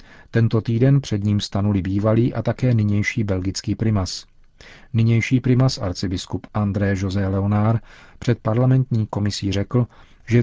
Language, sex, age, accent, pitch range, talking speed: Czech, male, 40-59, native, 100-115 Hz, 125 wpm